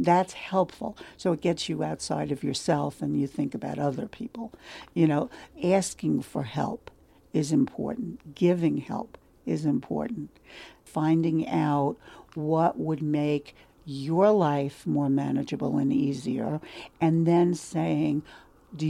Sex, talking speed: female, 130 wpm